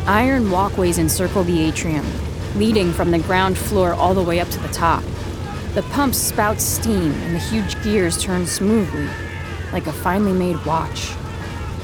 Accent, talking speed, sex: American, 160 wpm, female